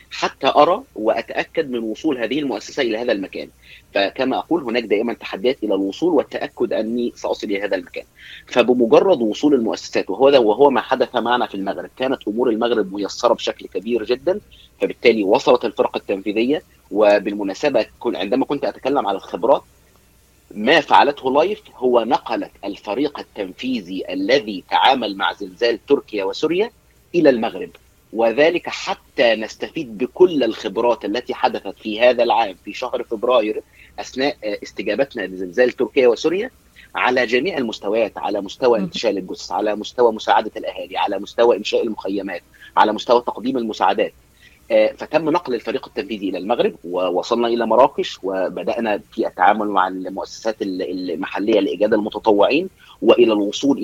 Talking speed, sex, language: 135 wpm, male, Arabic